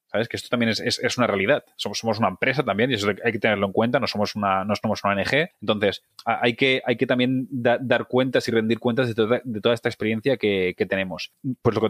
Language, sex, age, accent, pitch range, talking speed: Spanish, male, 20-39, Spanish, 100-125 Hz, 235 wpm